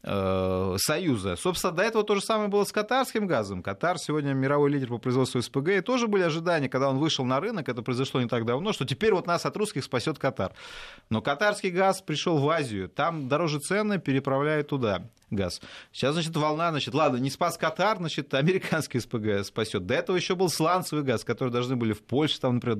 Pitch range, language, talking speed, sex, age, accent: 115-185 Hz, Russian, 205 wpm, male, 30-49, native